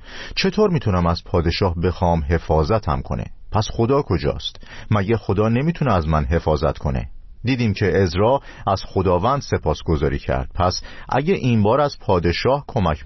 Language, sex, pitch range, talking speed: Persian, male, 85-115 Hz, 145 wpm